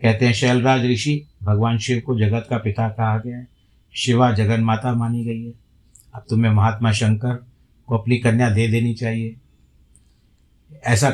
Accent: native